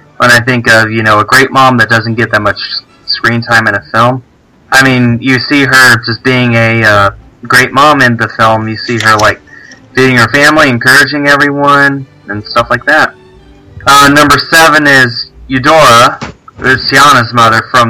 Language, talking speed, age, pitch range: English, 185 wpm, 20-39, 110-130 Hz